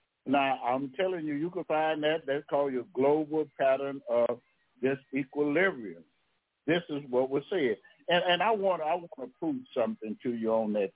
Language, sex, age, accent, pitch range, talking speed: English, male, 60-79, American, 120-150 Hz, 185 wpm